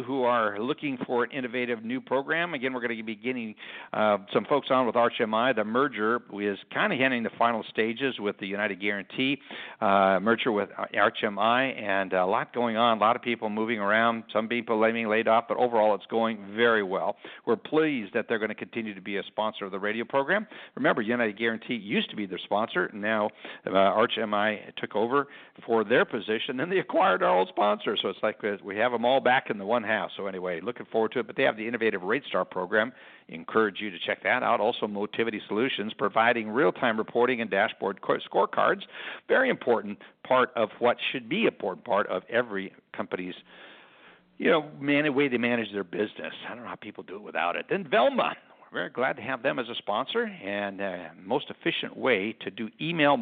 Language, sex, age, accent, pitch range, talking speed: English, male, 60-79, American, 105-130 Hz, 210 wpm